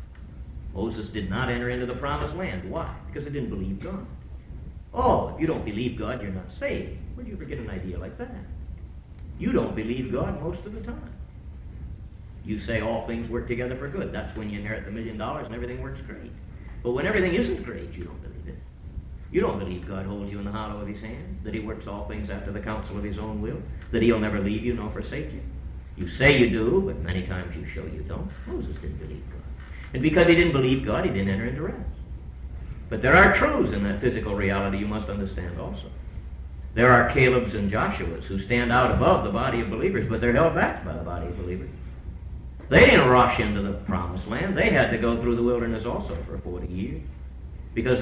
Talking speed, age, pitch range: 220 wpm, 50-69, 75-110 Hz